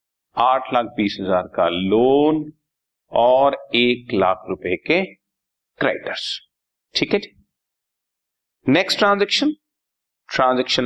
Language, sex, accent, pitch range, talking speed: Hindi, male, native, 115-160 Hz, 100 wpm